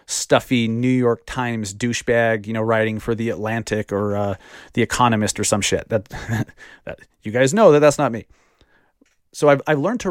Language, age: English, 30-49